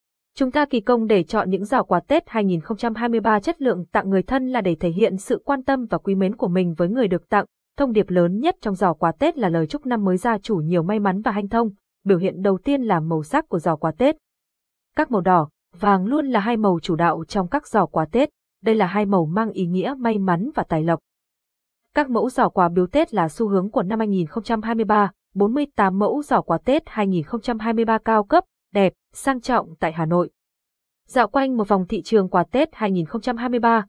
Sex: female